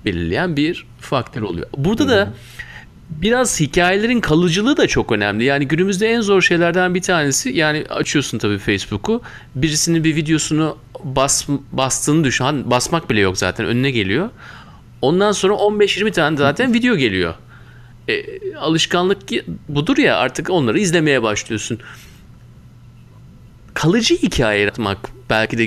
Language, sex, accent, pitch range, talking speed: Turkish, male, native, 120-170 Hz, 130 wpm